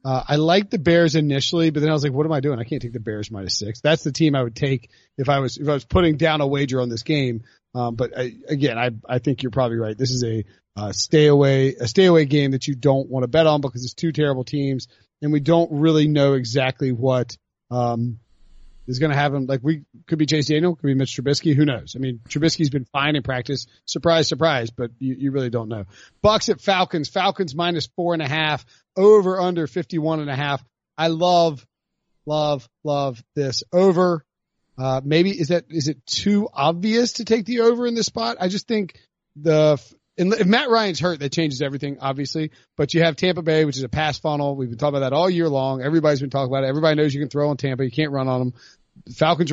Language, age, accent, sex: English, 30-49, American, male